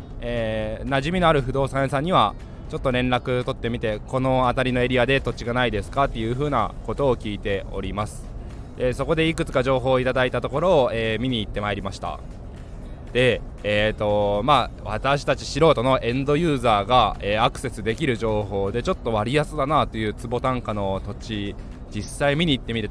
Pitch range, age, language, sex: 105-135 Hz, 20-39, Japanese, male